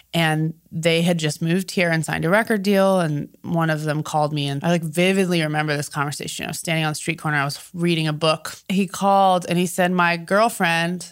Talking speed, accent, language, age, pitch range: 230 wpm, American, English, 20-39, 155-185 Hz